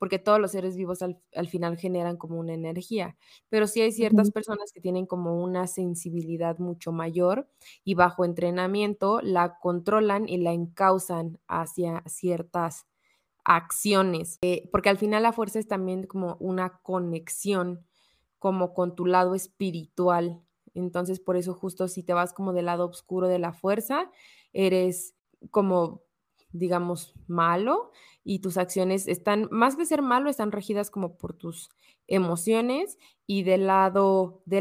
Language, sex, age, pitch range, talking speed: Spanish, female, 20-39, 175-205 Hz, 150 wpm